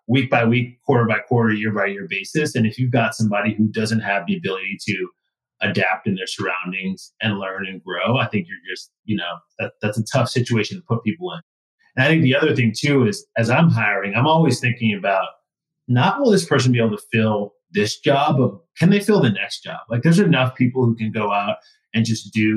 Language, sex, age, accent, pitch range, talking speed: English, male, 30-49, American, 105-125 Hz, 230 wpm